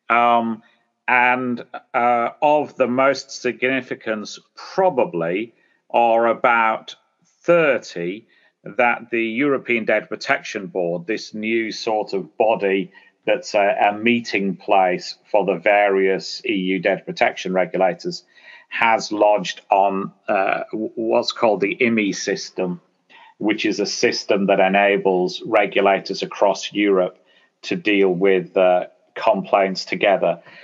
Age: 40-59